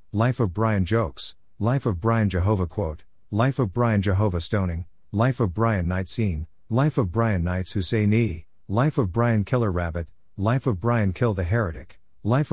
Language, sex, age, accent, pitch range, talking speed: English, male, 50-69, American, 90-115 Hz, 170 wpm